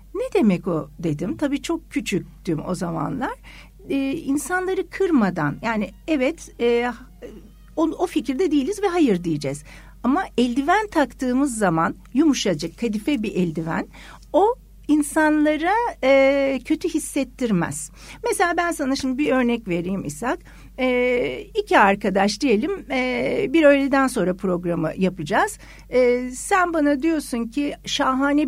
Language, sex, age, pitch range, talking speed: Turkish, female, 60-79, 200-330 Hz, 125 wpm